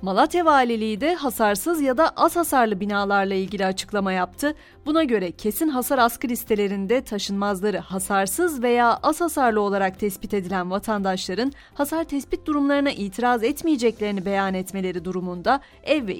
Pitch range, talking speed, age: 200-275 Hz, 135 wpm, 30-49